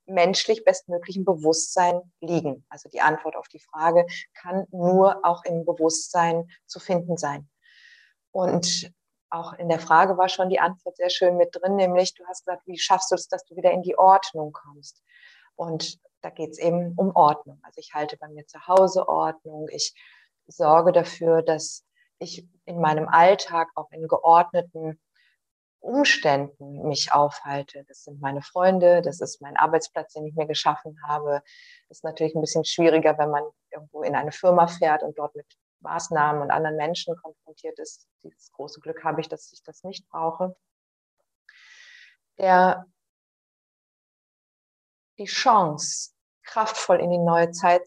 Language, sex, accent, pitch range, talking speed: German, female, German, 155-185 Hz, 160 wpm